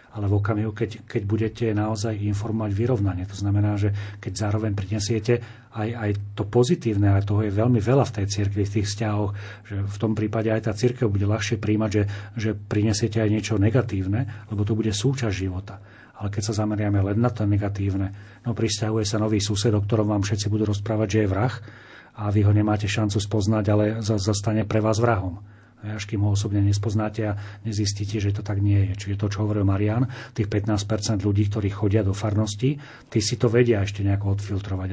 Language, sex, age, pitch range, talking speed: Slovak, male, 40-59, 100-110 Hz, 200 wpm